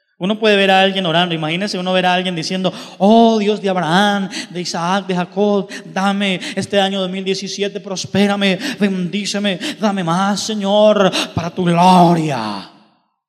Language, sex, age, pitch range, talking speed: Spanish, male, 20-39, 165-205 Hz, 145 wpm